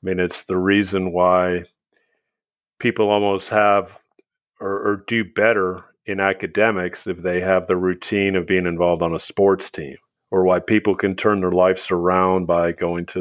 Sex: male